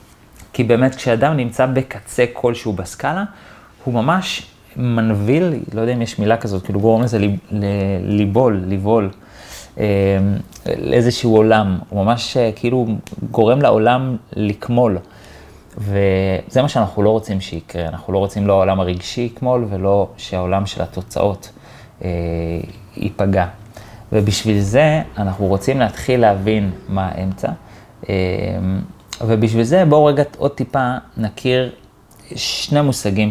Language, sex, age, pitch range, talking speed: Hebrew, male, 30-49, 95-120 Hz, 120 wpm